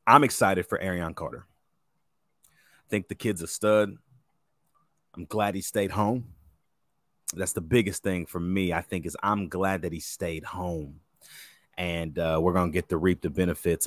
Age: 30-49